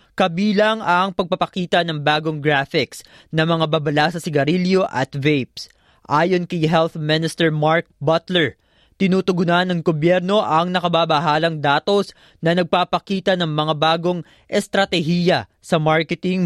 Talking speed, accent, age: 120 wpm, native, 20-39